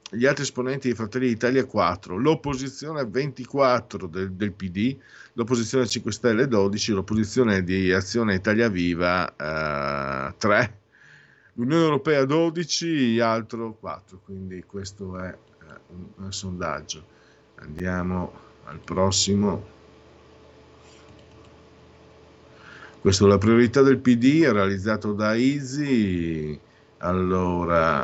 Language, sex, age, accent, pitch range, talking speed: Italian, male, 50-69, native, 100-125 Hz, 105 wpm